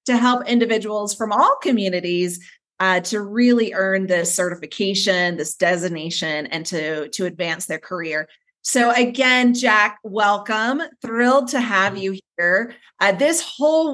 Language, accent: English, American